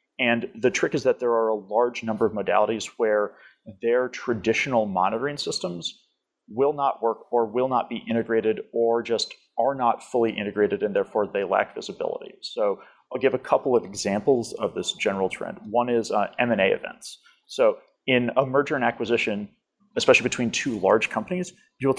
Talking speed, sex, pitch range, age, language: 180 wpm, male, 110-145 Hz, 30-49, English